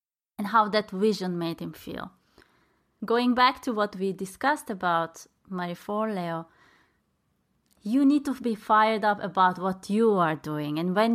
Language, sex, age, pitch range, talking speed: English, female, 20-39, 180-220 Hz, 155 wpm